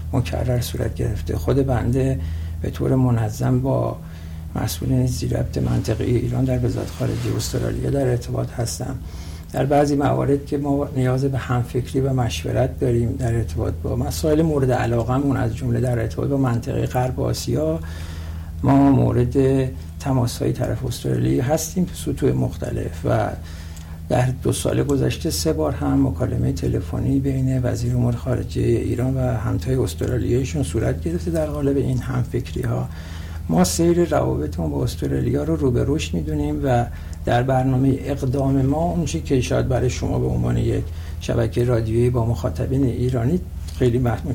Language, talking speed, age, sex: Persian, 155 wpm, 60-79, male